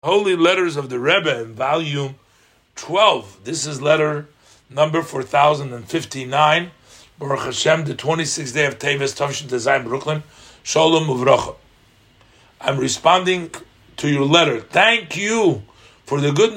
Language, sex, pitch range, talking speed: English, male, 120-160 Hz, 125 wpm